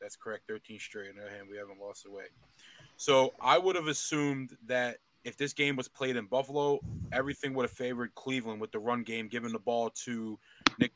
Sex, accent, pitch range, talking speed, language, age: male, American, 115-130 Hz, 215 wpm, English, 20-39